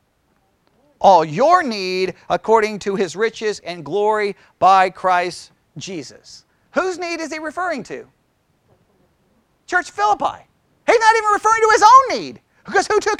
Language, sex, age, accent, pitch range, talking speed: English, male, 40-59, American, 240-335 Hz, 140 wpm